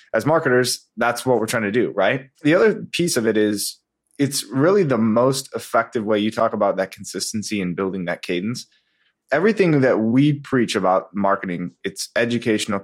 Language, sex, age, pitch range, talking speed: English, male, 20-39, 95-120 Hz, 180 wpm